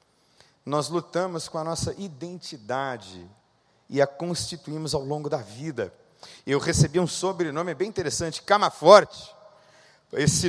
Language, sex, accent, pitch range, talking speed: Portuguese, male, Brazilian, 140-180 Hz, 120 wpm